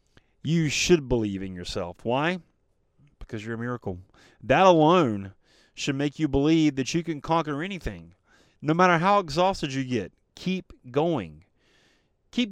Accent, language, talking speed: American, English, 145 wpm